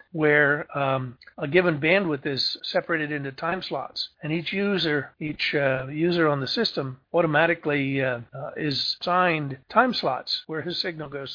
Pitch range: 140-175 Hz